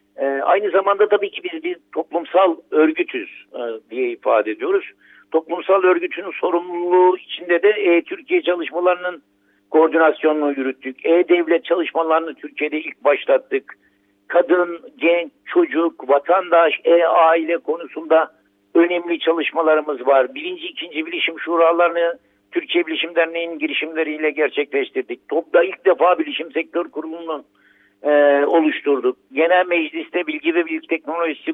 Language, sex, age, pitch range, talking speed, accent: Turkish, male, 60-79, 155-210 Hz, 105 wpm, native